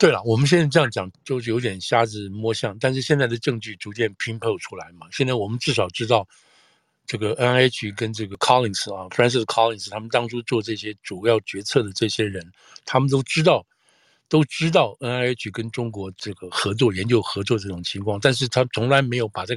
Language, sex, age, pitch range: Chinese, male, 60-79, 100-120 Hz